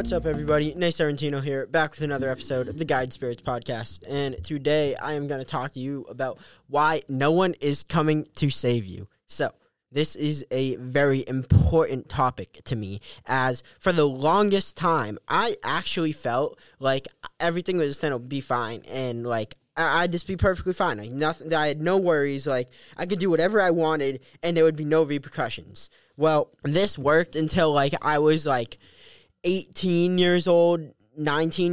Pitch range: 135-160 Hz